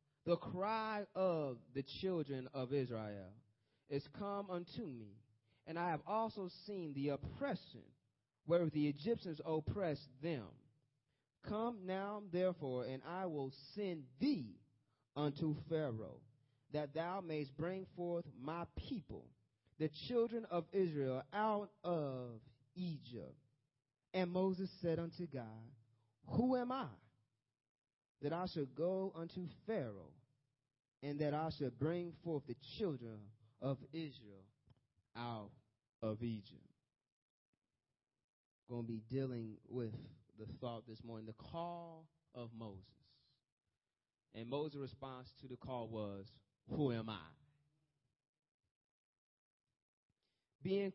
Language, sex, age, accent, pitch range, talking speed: English, male, 30-49, American, 120-170 Hz, 115 wpm